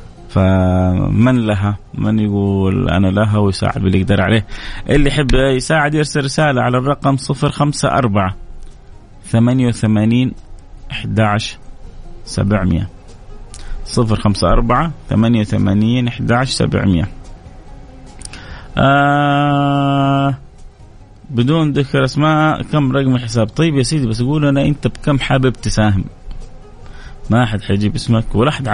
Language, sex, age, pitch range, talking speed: Arabic, male, 30-49, 105-135 Hz, 110 wpm